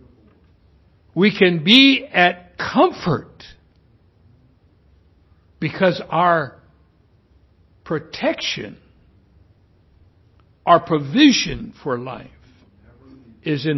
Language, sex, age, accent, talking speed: English, male, 60-79, American, 60 wpm